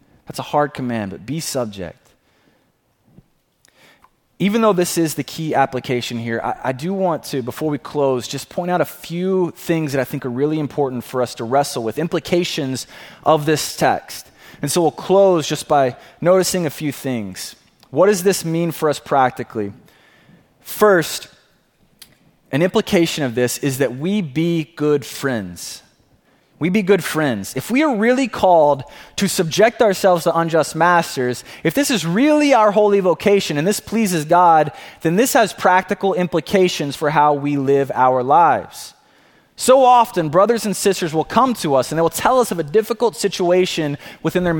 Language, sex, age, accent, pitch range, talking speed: English, male, 20-39, American, 145-195 Hz, 175 wpm